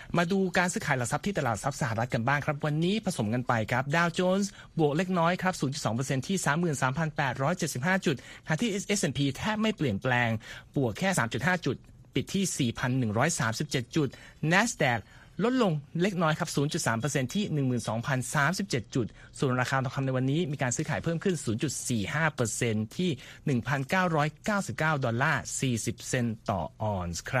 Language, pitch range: Thai, 125-165 Hz